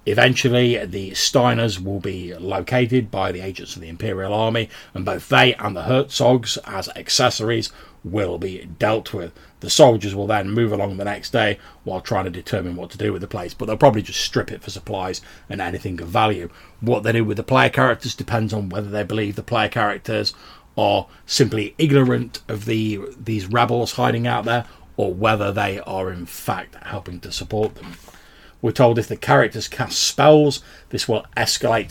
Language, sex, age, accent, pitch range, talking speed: English, male, 30-49, British, 95-120 Hz, 190 wpm